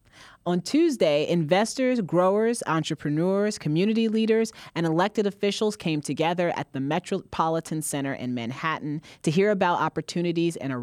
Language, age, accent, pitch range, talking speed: English, 30-49, American, 135-180 Hz, 135 wpm